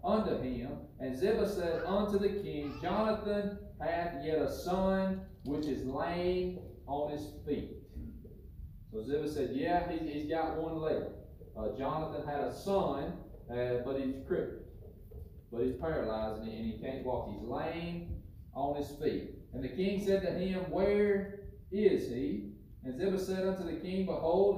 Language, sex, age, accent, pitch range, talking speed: English, male, 40-59, American, 135-175 Hz, 165 wpm